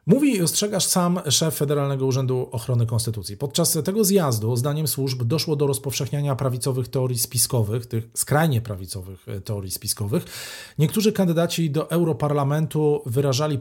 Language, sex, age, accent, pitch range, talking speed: Polish, male, 40-59, native, 125-155 Hz, 130 wpm